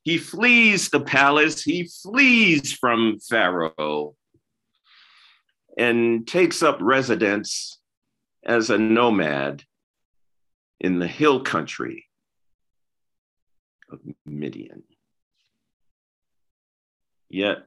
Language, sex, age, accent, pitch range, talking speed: English, male, 50-69, American, 85-140 Hz, 75 wpm